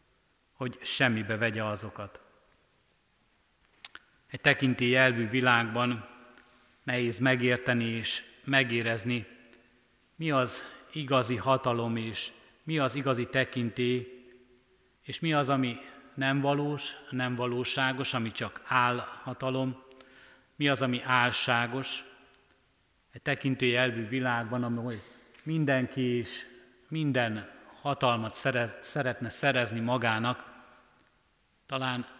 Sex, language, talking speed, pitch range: male, Hungarian, 90 wpm, 115-135 Hz